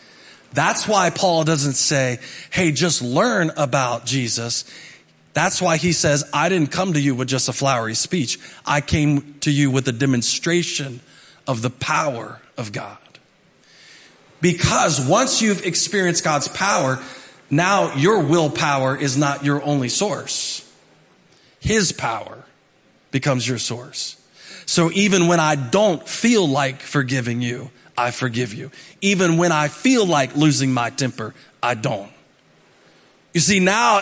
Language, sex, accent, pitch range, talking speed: English, male, American, 140-200 Hz, 140 wpm